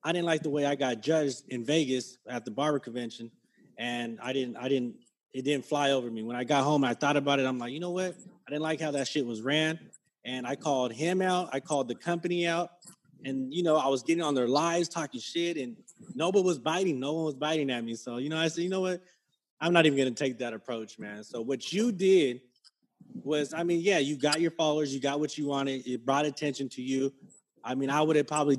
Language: English